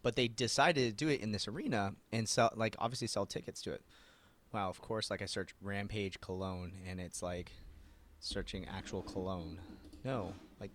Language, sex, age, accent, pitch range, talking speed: English, male, 30-49, American, 100-140 Hz, 185 wpm